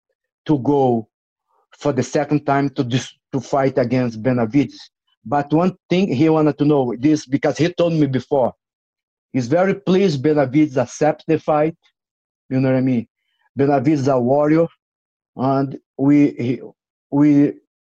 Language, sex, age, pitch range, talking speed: English, male, 50-69, 140-165 Hz, 140 wpm